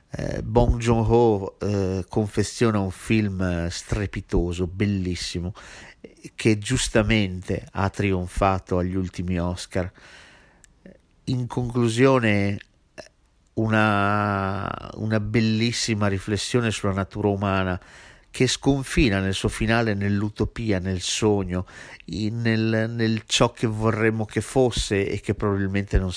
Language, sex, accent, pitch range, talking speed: Italian, male, native, 95-115 Hz, 100 wpm